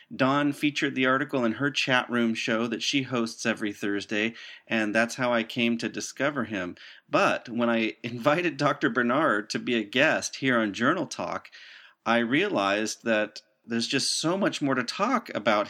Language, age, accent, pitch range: English, 40-59, American, 110-135 Hz